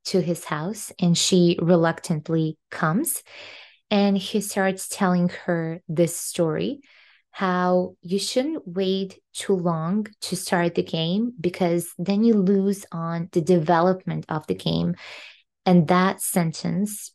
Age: 20-39